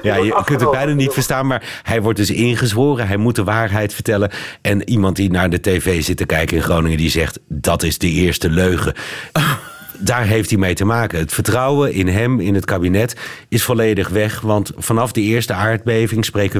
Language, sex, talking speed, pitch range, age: Dutch, male, 210 wpm, 95-115 Hz, 50-69